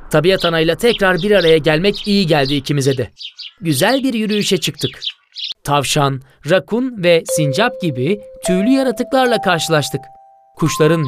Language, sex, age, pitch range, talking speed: Turkish, male, 30-49, 145-200 Hz, 125 wpm